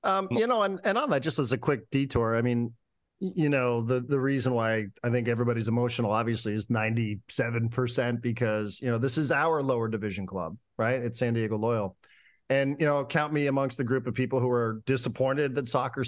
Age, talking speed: 40-59, 210 wpm